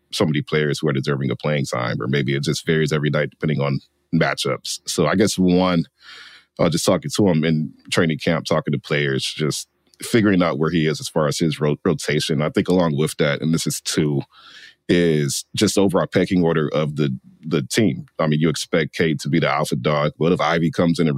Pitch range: 70-85 Hz